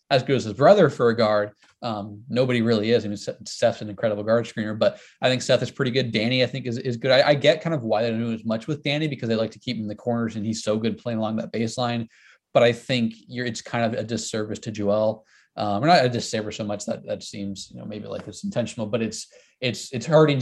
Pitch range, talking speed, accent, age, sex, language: 110-130 Hz, 275 wpm, American, 20-39, male, English